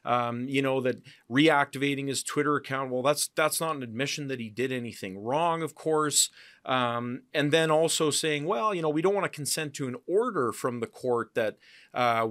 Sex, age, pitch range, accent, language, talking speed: male, 40-59, 110-140 Hz, American, English, 205 wpm